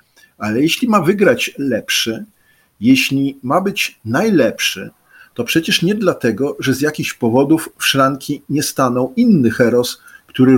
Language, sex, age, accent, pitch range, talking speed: Polish, male, 50-69, native, 130-195 Hz, 135 wpm